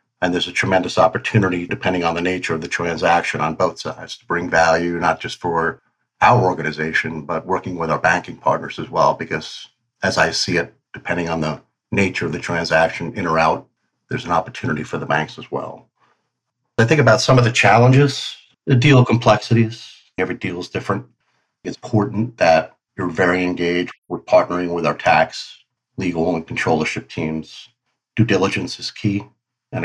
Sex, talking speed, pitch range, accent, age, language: male, 175 wpm, 85-110 Hz, American, 50-69, English